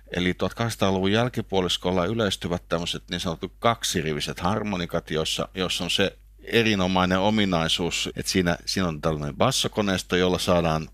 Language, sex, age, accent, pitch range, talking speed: Finnish, male, 50-69, native, 90-110 Hz, 120 wpm